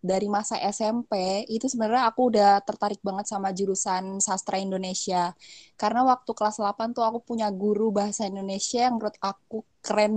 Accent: native